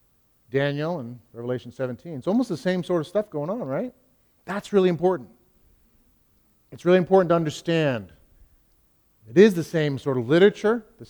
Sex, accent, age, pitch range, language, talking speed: male, American, 40-59, 125-175 Hz, English, 160 wpm